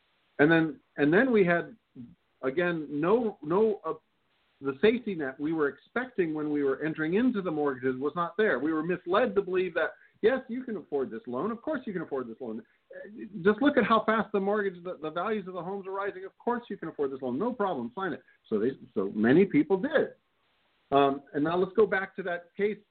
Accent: American